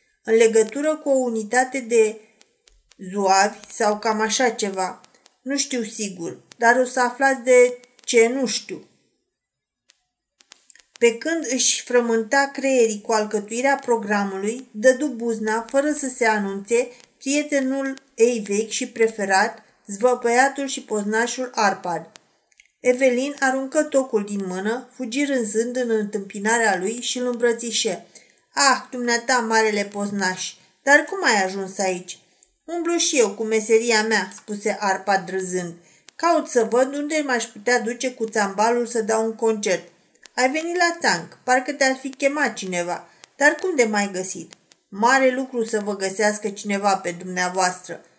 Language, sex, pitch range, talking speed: Romanian, female, 210-265 Hz, 140 wpm